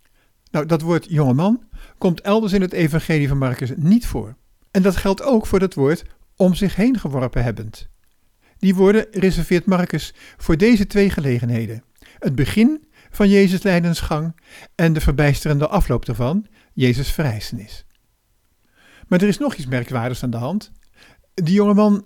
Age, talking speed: 50-69, 160 wpm